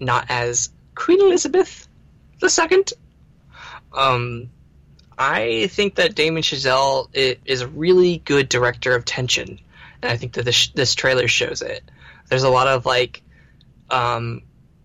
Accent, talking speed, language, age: American, 140 wpm, English, 20-39